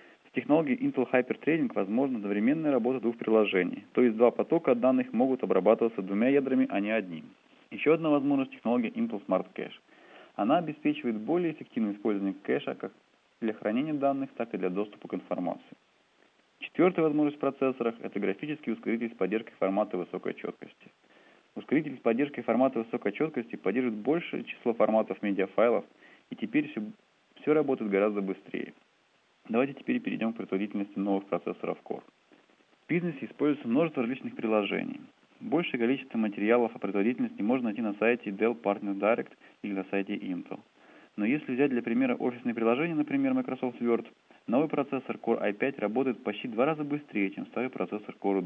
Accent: native